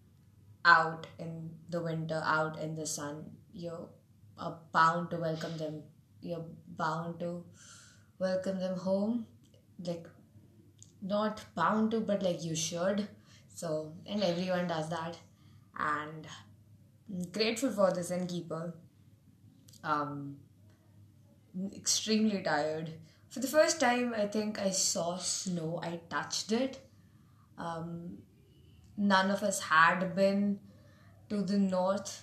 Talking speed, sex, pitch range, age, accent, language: 115 wpm, female, 145-185 Hz, 20-39, Indian, English